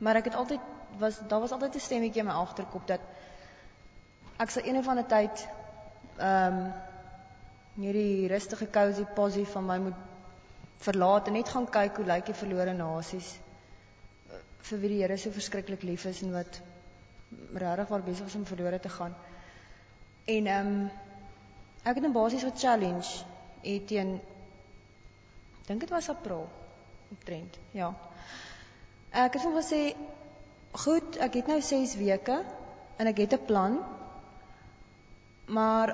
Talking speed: 145 wpm